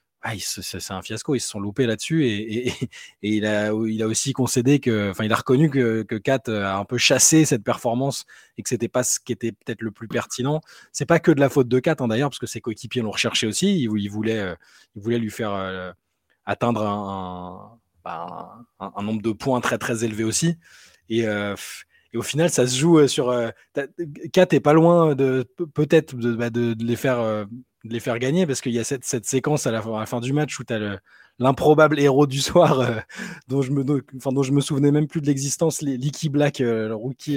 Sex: male